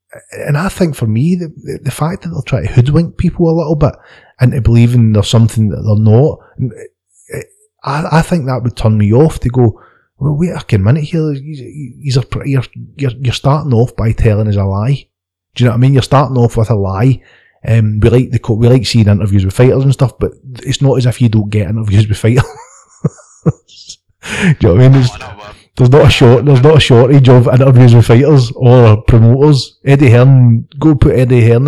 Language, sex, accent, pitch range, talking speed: English, male, British, 110-135 Hz, 220 wpm